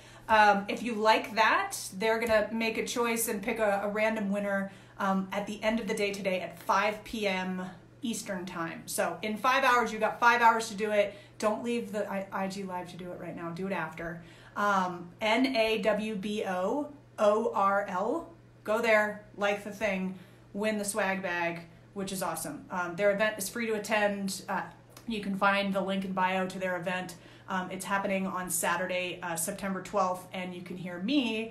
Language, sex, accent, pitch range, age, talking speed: English, female, American, 180-215 Hz, 30-49, 190 wpm